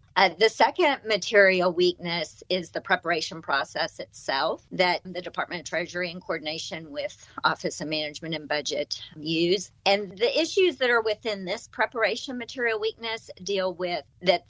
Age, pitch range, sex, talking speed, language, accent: 40-59, 165-210 Hz, female, 155 wpm, English, American